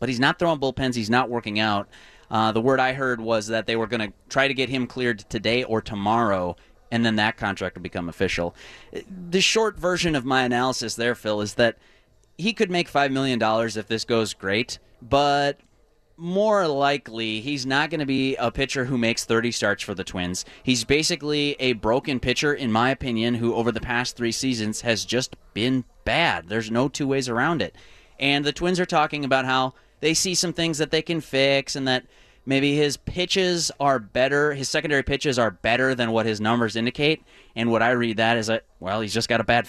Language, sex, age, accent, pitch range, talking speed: English, male, 30-49, American, 110-140 Hz, 210 wpm